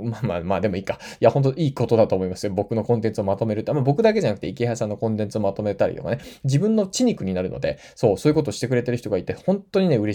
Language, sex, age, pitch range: Japanese, male, 20-39, 110-160 Hz